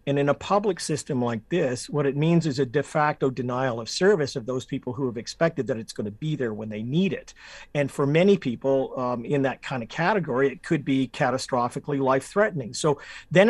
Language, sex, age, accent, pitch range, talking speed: English, male, 50-69, American, 135-175 Hz, 220 wpm